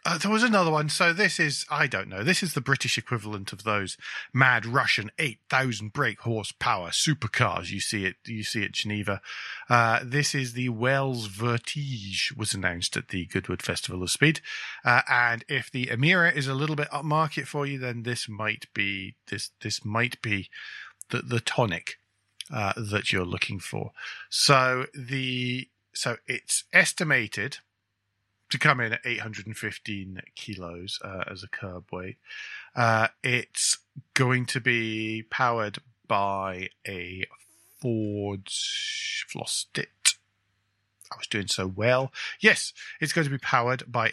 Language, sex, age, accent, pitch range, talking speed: English, male, 40-59, British, 100-135 Hz, 155 wpm